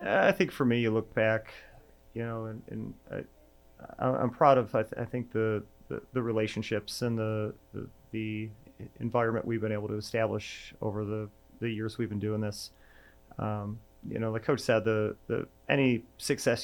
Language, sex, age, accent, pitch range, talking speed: English, male, 30-49, American, 110-120 Hz, 180 wpm